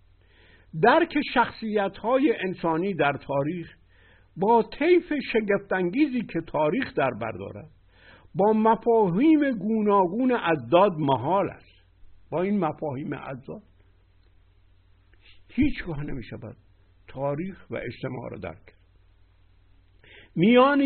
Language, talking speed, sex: Persian, 90 wpm, male